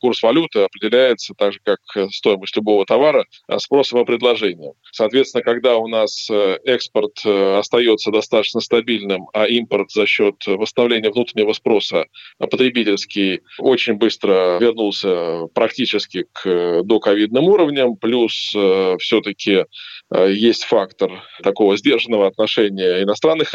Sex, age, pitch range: male, 20-39, 100-125 Hz